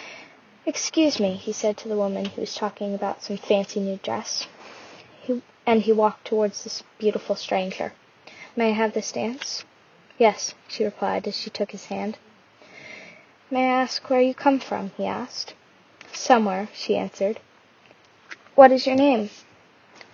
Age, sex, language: 10-29, female, English